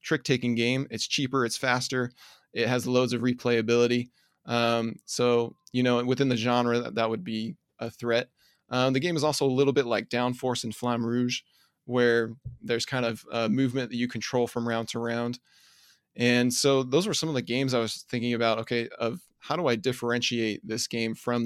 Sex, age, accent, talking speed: male, 20-39, American, 200 wpm